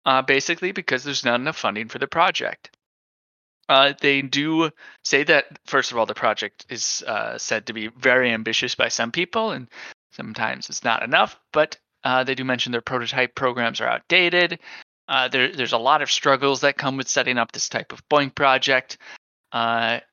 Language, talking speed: English, 190 wpm